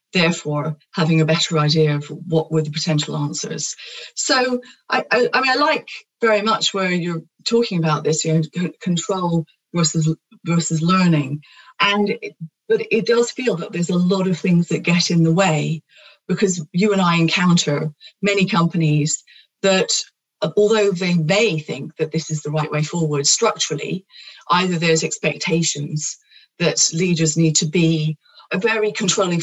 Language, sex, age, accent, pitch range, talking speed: English, female, 30-49, British, 160-200 Hz, 165 wpm